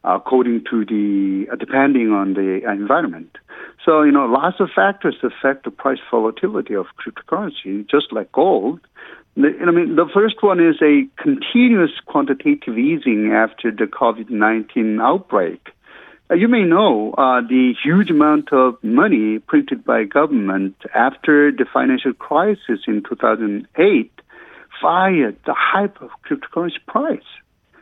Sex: male